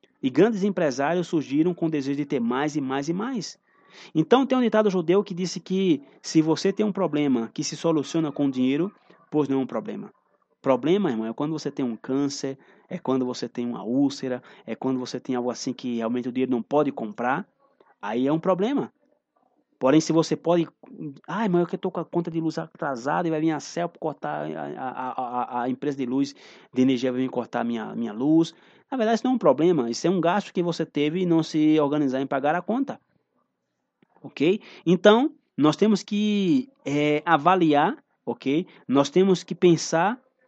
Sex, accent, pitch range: male, Brazilian, 140-185 Hz